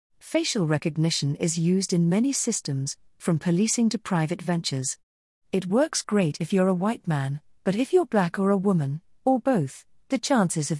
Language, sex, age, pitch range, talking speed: English, female, 40-59, 155-210 Hz, 180 wpm